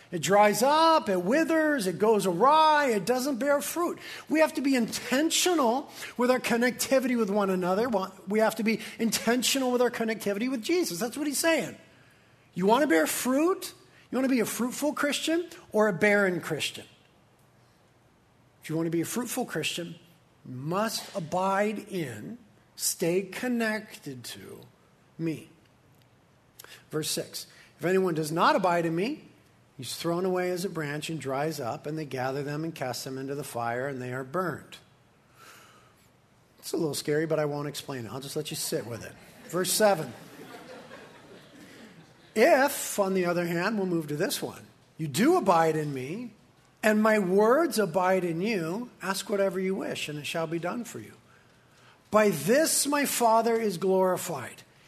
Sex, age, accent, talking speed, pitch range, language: male, 40-59, American, 165 wpm, 160-235 Hz, English